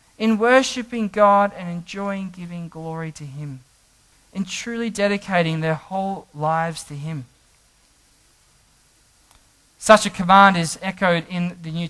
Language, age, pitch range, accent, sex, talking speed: English, 20-39, 150-195 Hz, Australian, male, 125 wpm